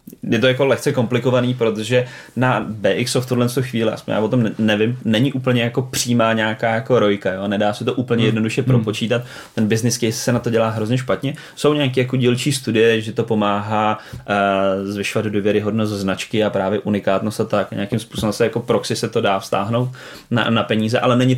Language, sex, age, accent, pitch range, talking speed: Czech, male, 20-39, native, 105-120 Hz, 200 wpm